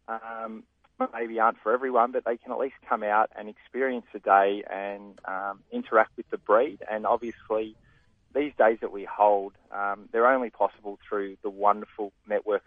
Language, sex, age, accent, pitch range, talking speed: English, male, 20-39, Australian, 100-120 Hz, 175 wpm